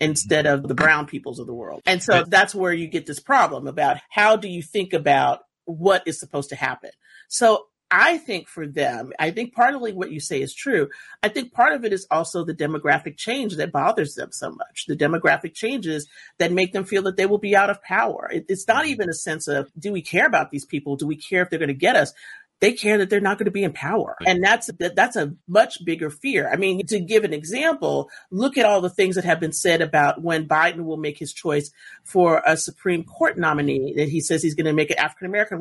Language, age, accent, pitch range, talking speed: English, 40-59, American, 155-210 Hz, 245 wpm